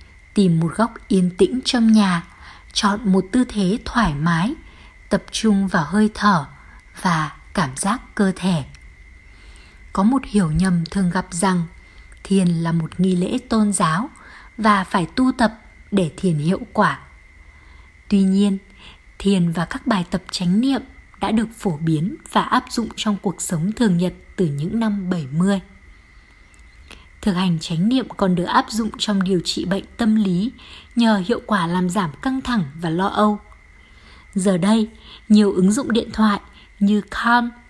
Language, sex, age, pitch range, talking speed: Vietnamese, female, 20-39, 175-220 Hz, 165 wpm